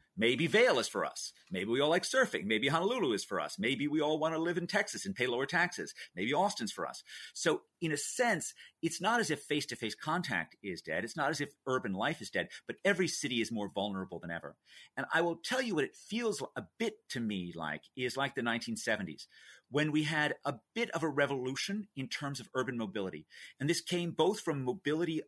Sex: male